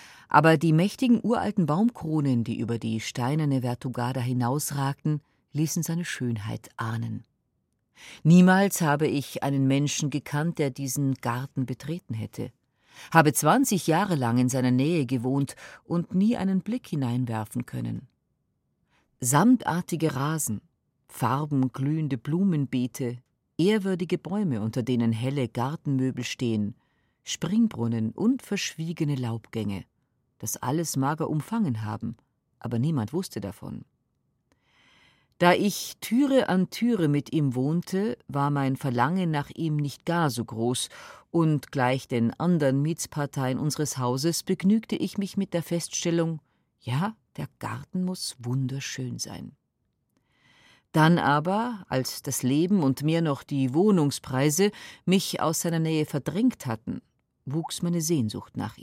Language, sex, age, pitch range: German, female, 40-59, 125-170 Hz